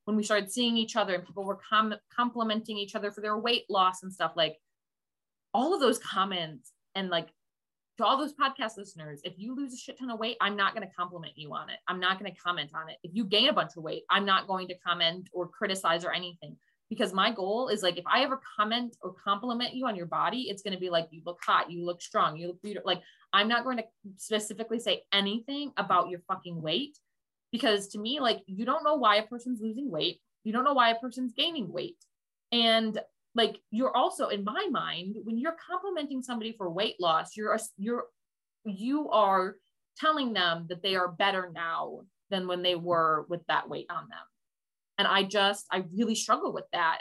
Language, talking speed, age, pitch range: English, 220 wpm, 20-39, 180-230 Hz